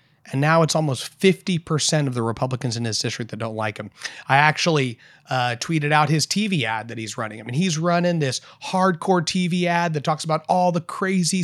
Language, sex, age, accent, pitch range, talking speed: English, male, 30-49, American, 125-160 Hz, 210 wpm